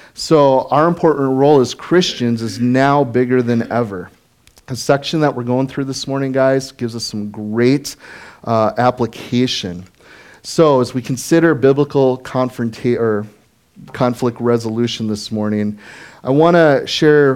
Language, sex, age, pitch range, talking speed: English, male, 30-49, 115-140 Hz, 140 wpm